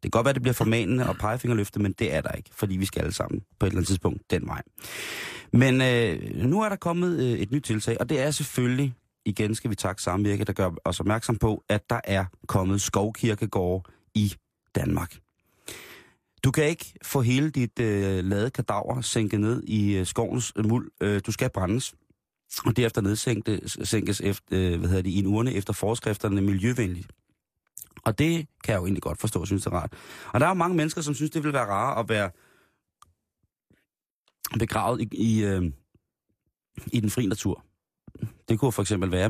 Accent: native